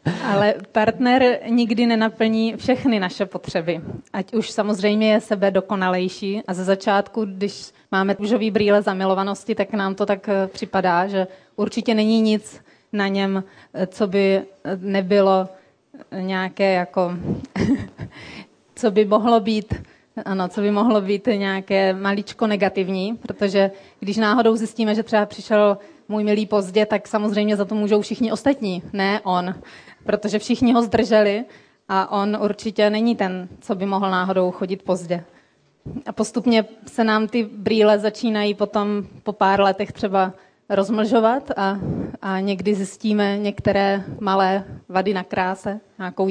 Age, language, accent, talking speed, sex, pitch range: 30-49, Czech, native, 135 wpm, female, 195-220 Hz